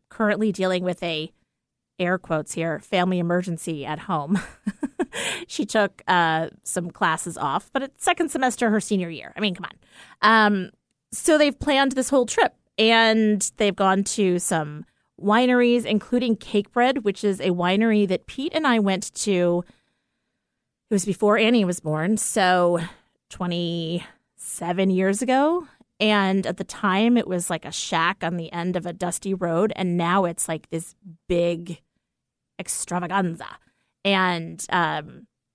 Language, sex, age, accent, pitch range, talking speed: English, female, 30-49, American, 175-225 Hz, 150 wpm